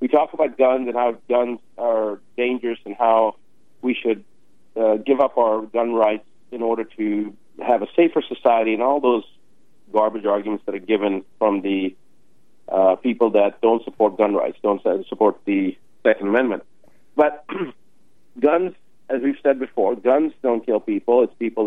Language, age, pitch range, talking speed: English, 40-59, 110-135 Hz, 165 wpm